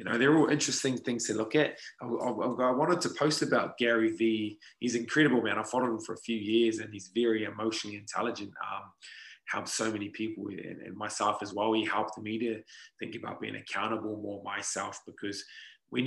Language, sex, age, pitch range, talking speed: English, male, 20-39, 110-125 Hz, 205 wpm